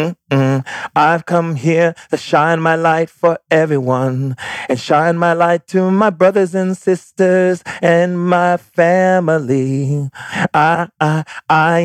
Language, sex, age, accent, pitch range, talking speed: English, male, 30-49, American, 135-180 Hz, 120 wpm